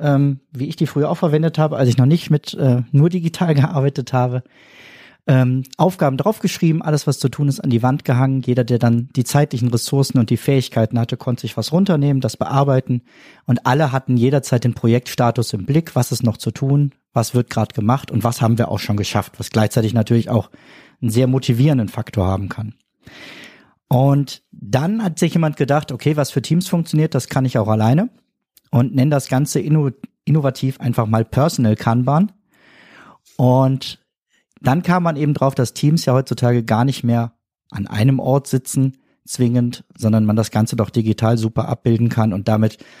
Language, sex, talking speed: German, male, 185 wpm